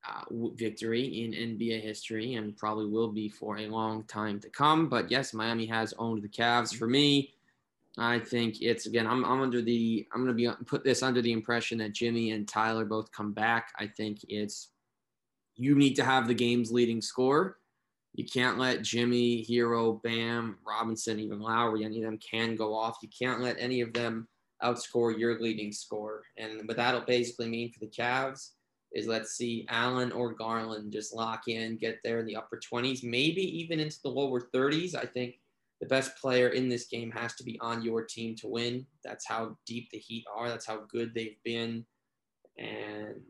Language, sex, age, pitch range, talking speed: English, male, 20-39, 110-120 Hz, 195 wpm